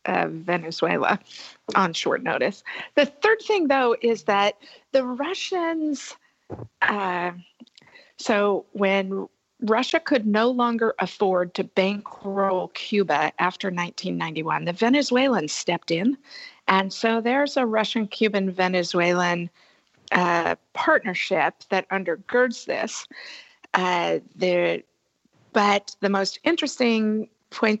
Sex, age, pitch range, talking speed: female, 50-69, 180-225 Hz, 95 wpm